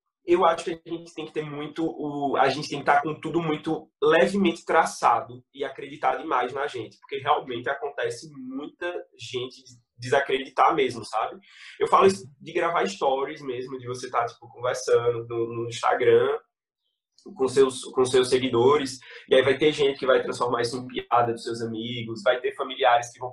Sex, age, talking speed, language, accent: male, 20-39, 175 wpm, Portuguese, Brazilian